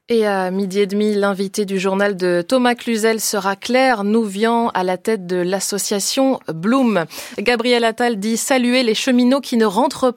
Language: French